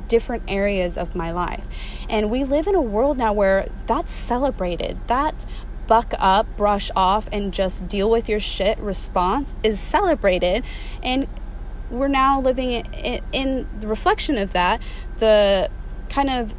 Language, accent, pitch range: English, American, 190-235 Hz